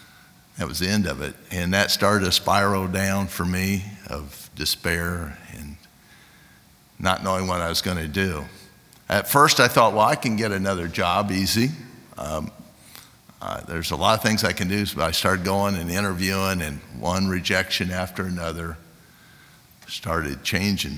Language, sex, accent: English, male, American